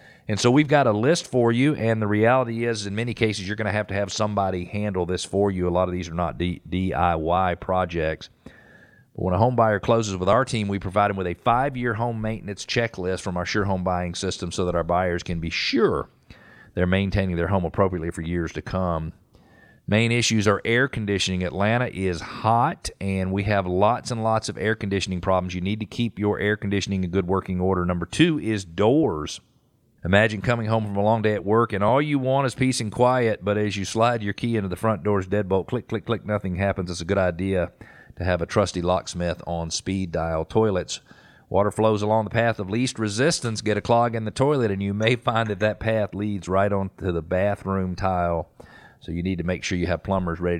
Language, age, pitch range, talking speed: English, 40-59, 90-110 Hz, 225 wpm